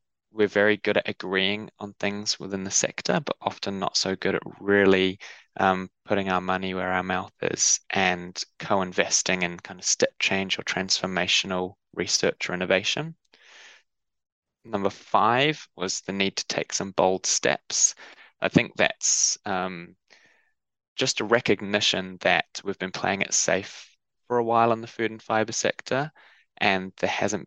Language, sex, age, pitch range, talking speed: English, male, 10-29, 95-105 Hz, 155 wpm